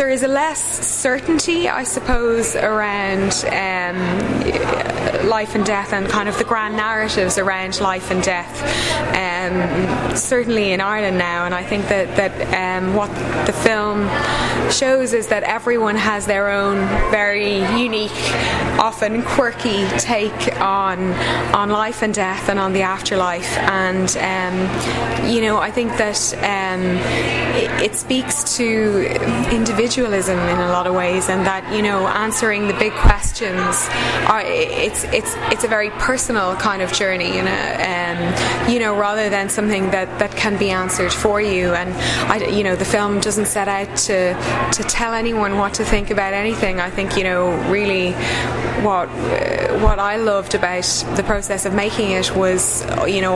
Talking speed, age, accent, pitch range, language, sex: 165 wpm, 20-39, Irish, 185-215 Hz, English, female